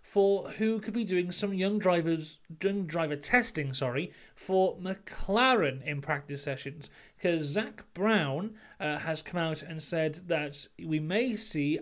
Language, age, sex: English, 30-49, male